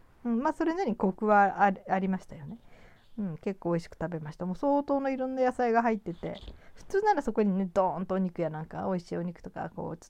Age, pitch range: 40-59, 155-210 Hz